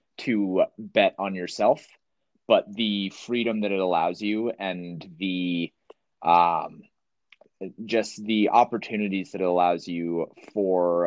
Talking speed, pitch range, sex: 120 wpm, 85-105 Hz, male